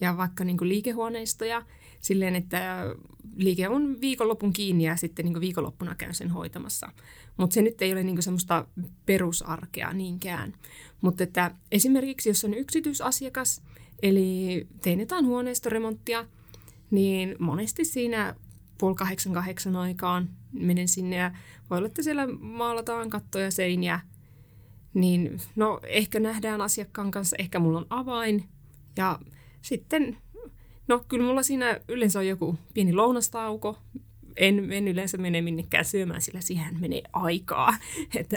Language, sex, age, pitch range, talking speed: Finnish, female, 30-49, 170-220 Hz, 130 wpm